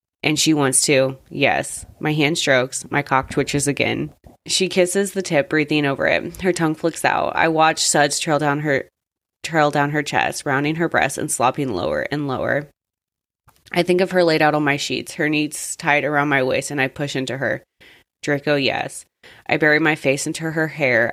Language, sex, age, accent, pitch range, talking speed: English, female, 20-39, American, 135-155 Hz, 200 wpm